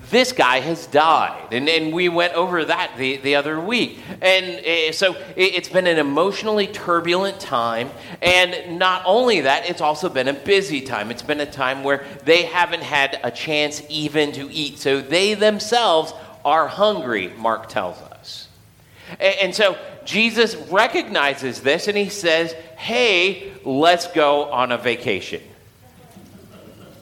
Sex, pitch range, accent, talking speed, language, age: male, 110-175 Hz, American, 155 wpm, English, 40-59